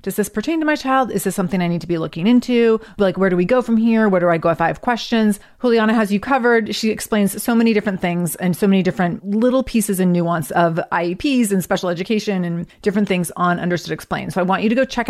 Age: 30-49